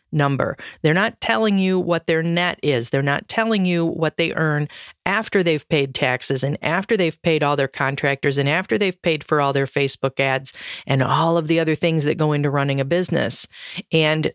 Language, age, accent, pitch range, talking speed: English, 40-59, American, 150-190 Hz, 205 wpm